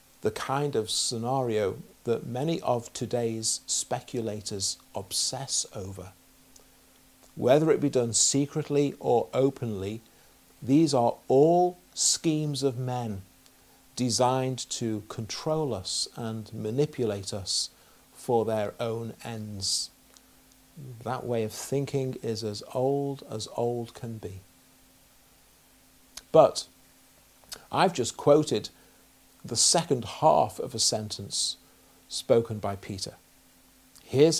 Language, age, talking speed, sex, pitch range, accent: English, 50-69, 105 wpm, male, 105-140 Hz, British